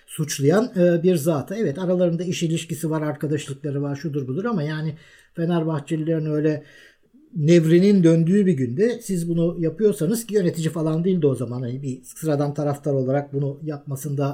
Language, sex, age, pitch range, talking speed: Turkish, male, 50-69, 150-195 Hz, 150 wpm